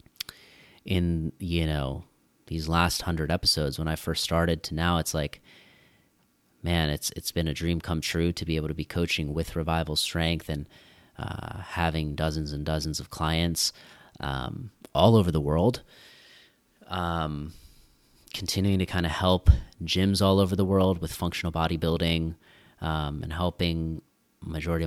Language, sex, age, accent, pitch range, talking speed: English, male, 30-49, American, 80-90 Hz, 150 wpm